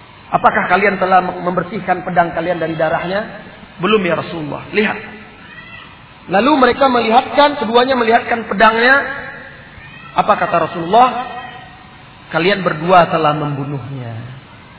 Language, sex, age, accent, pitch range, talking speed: Indonesian, male, 40-59, native, 180-245 Hz, 100 wpm